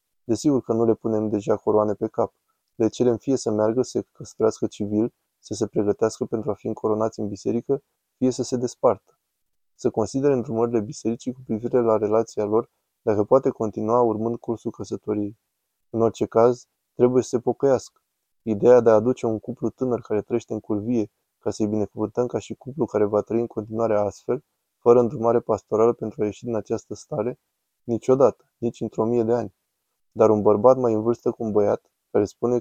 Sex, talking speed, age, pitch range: male, 190 wpm, 20-39, 110-120 Hz